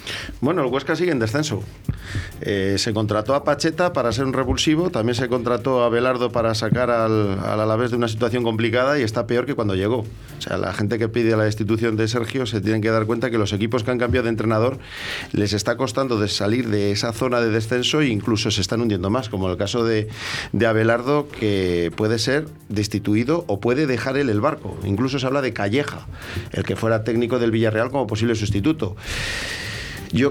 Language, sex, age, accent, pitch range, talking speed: Spanish, male, 40-59, Spanish, 110-140 Hz, 210 wpm